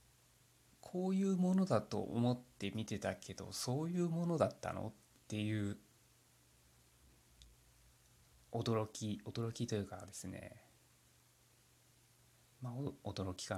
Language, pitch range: Japanese, 105-130 Hz